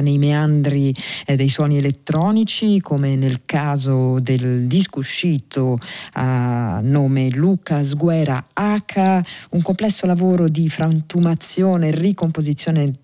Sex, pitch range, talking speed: female, 135-170 Hz, 115 wpm